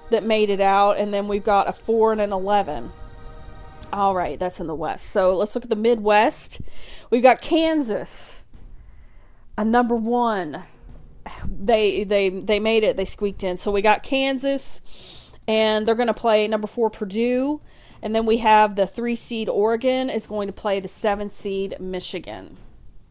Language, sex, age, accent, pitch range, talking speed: English, female, 40-59, American, 195-240 Hz, 170 wpm